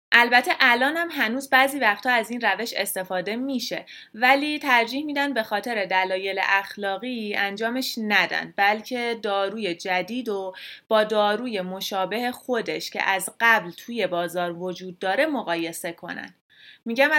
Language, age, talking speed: Persian, 30-49, 130 wpm